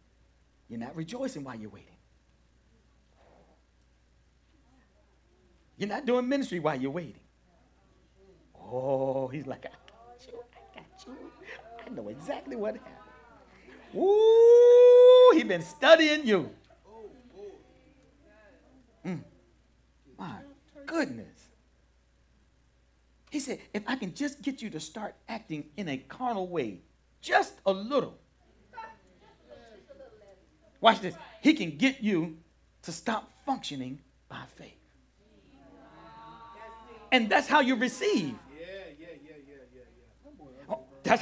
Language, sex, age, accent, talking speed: English, male, 50-69, American, 100 wpm